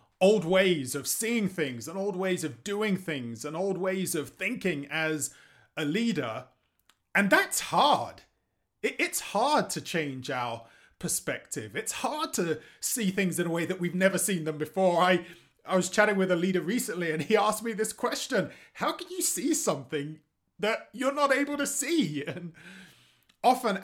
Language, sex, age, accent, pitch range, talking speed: English, male, 30-49, British, 145-200 Hz, 175 wpm